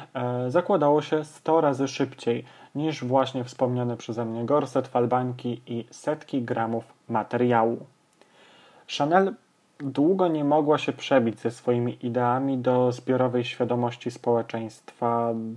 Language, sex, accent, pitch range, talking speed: Polish, male, native, 120-135 Hz, 110 wpm